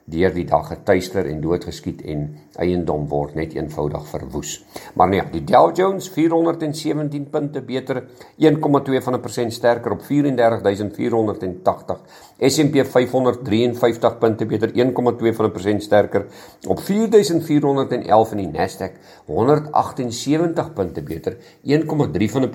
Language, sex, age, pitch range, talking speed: English, male, 50-69, 110-145 Hz, 100 wpm